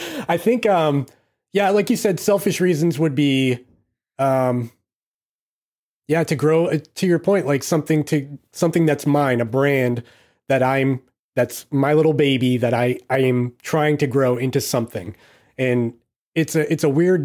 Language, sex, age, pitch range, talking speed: English, male, 30-49, 125-150 Hz, 165 wpm